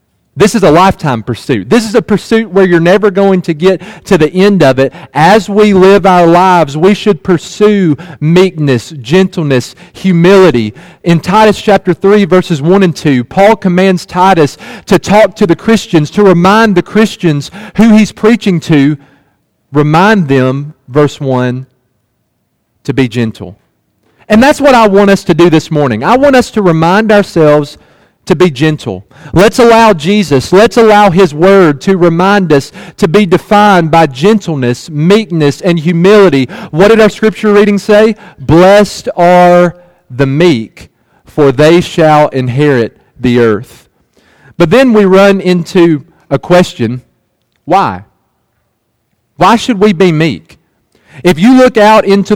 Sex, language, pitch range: male, English, 145-205 Hz